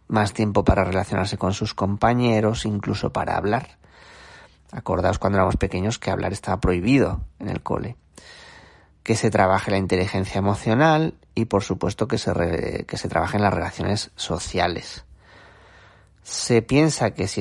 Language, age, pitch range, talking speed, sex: Spanish, 30-49, 95-120 Hz, 150 wpm, male